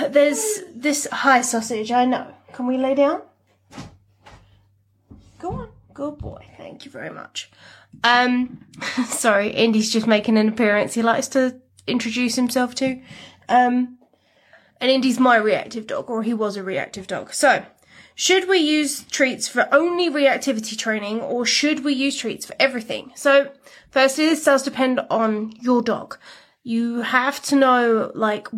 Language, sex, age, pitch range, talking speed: English, female, 20-39, 230-275 Hz, 150 wpm